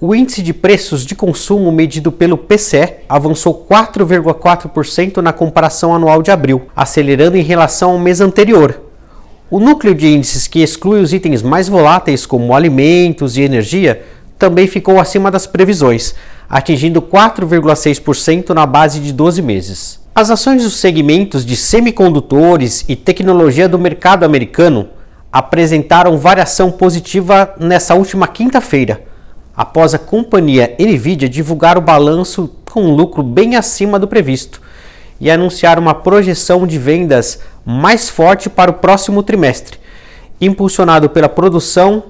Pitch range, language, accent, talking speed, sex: 155-195 Hz, Portuguese, Brazilian, 135 wpm, male